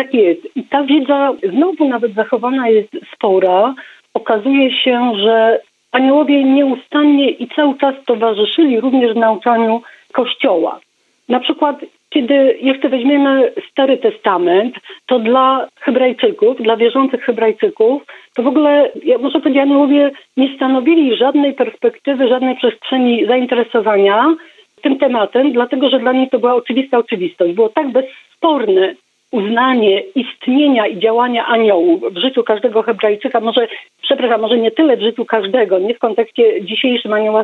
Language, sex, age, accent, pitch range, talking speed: Polish, female, 40-59, native, 225-285 Hz, 135 wpm